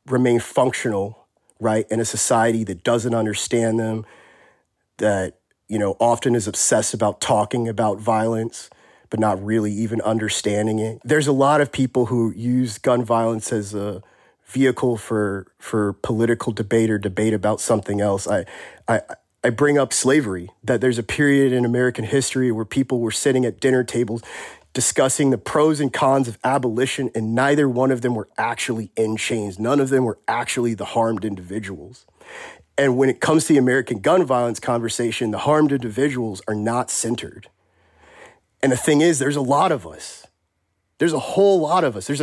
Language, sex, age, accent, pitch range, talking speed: English, male, 30-49, American, 110-130 Hz, 175 wpm